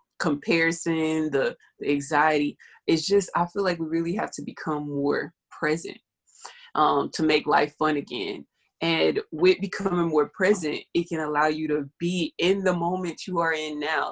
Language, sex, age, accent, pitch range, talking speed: English, female, 20-39, American, 155-190 Hz, 165 wpm